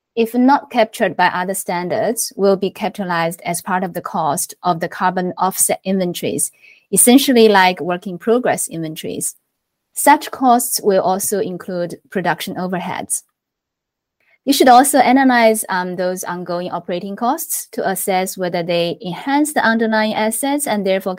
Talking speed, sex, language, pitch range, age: 140 wpm, female, English, 180-225 Hz, 20-39